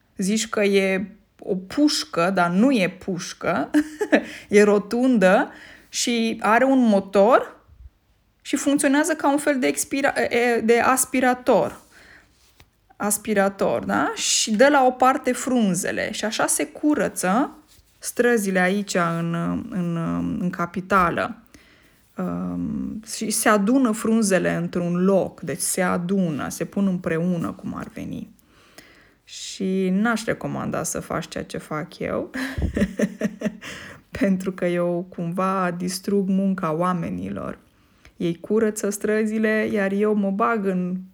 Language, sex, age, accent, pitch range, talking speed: Romanian, female, 20-39, native, 180-235 Hz, 120 wpm